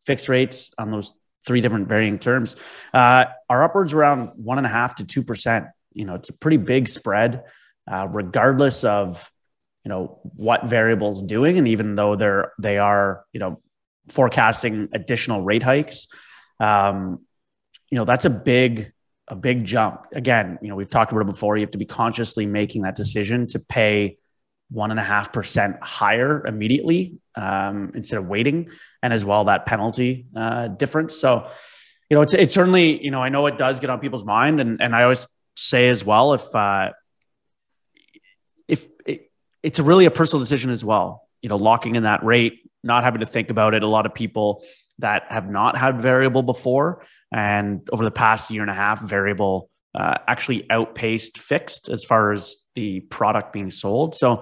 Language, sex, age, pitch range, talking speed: English, male, 30-49, 105-130 Hz, 185 wpm